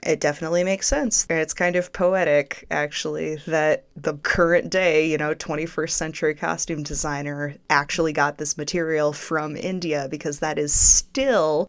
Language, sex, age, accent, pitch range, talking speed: English, female, 20-39, American, 150-180 Hz, 150 wpm